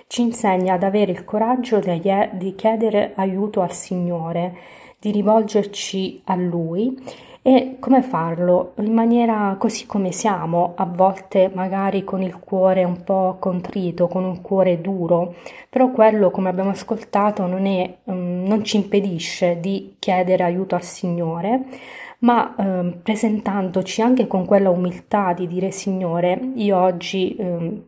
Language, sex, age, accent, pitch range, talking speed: Italian, female, 20-39, native, 180-215 Hz, 135 wpm